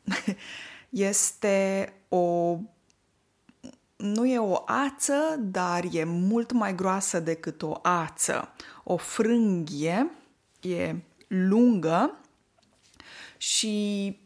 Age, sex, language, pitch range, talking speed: 20-39, female, Romanian, 190-250 Hz, 80 wpm